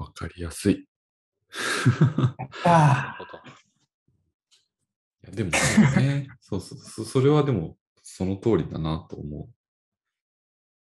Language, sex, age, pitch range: Japanese, male, 40-59, 80-125 Hz